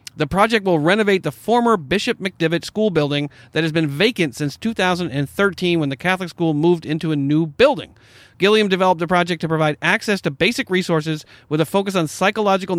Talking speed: 190 wpm